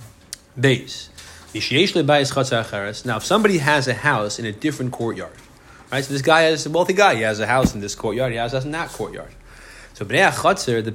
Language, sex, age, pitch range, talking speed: English, male, 30-49, 110-140 Hz, 185 wpm